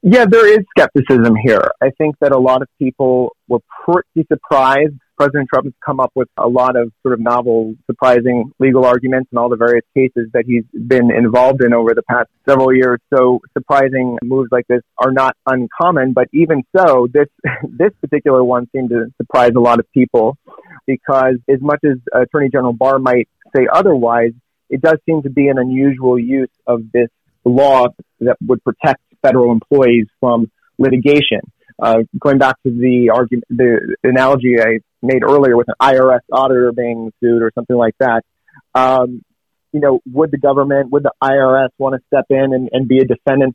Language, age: English, 30-49